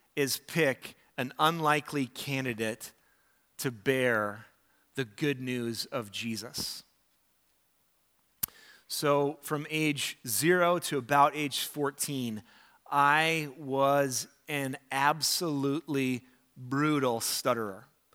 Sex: male